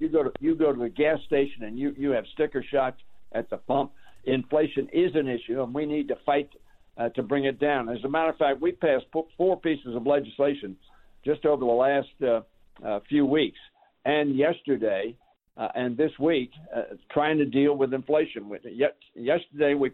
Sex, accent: male, American